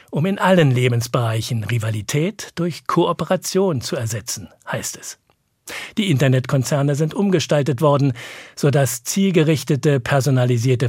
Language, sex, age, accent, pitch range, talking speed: German, male, 50-69, German, 130-170 Hz, 110 wpm